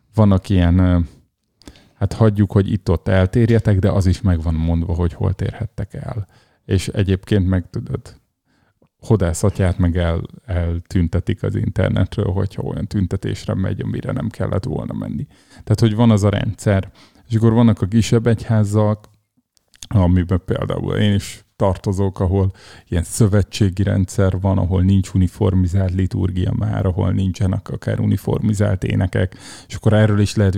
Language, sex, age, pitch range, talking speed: Hungarian, male, 30-49, 95-110 Hz, 140 wpm